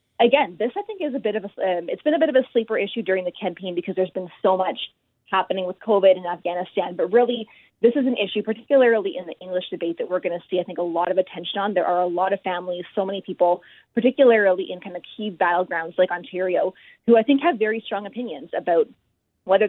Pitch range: 180-220 Hz